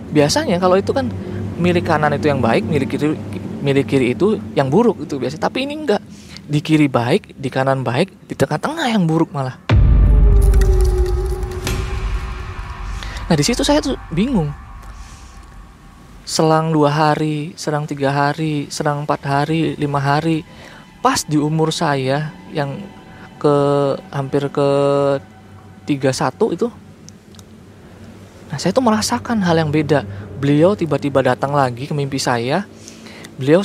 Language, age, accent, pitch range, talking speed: Indonesian, 20-39, native, 130-170 Hz, 135 wpm